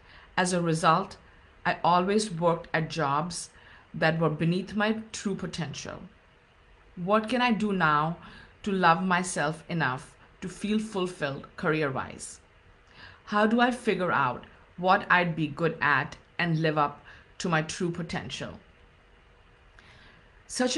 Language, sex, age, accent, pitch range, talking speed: English, female, 50-69, Indian, 150-205 Hz, 130 wpm